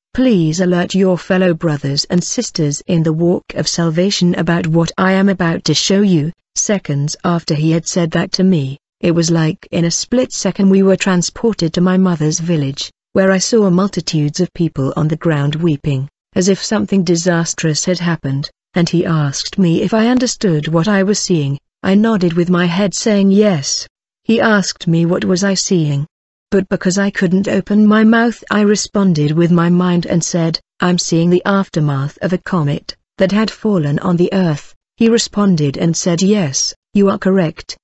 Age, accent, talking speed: 40-59, British, 185 wpm